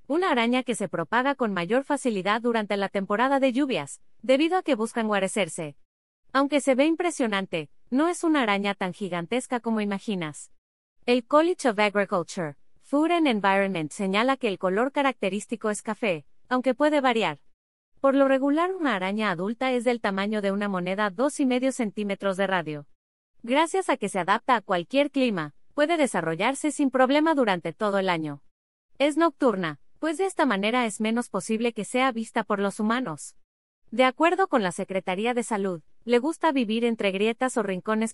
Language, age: Spanish, 30-49